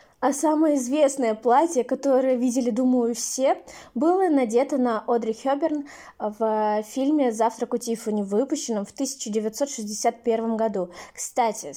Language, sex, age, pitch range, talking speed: Russian, female, 20-39, 225-270 Hz, 115 wpm